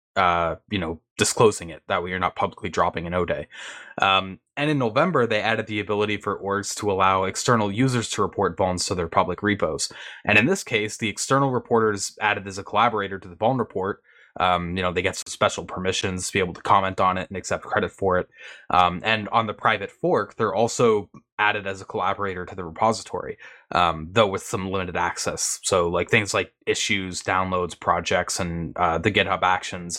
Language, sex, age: English, male, 20-39